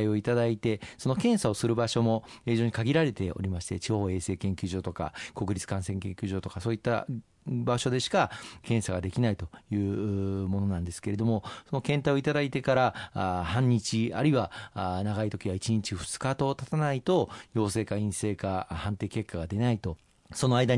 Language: Japanese